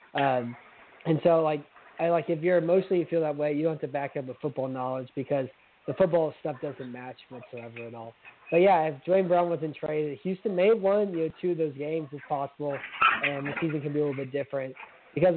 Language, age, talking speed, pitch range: English, 20-39, 230 wpm, 135-160 Hz